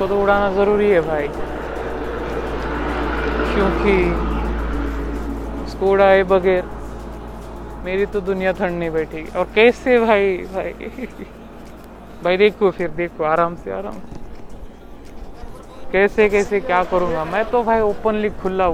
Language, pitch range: Marathi, 155-190 Hz